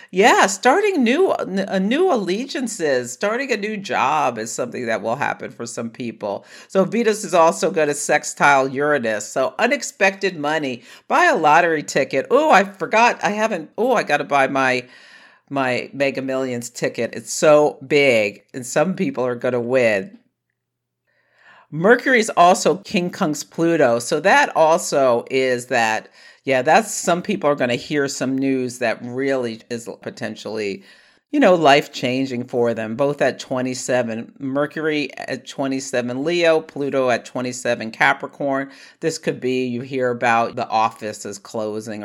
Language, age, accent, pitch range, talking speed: English, 50-69, American, 120-160 Hz, 155 wpm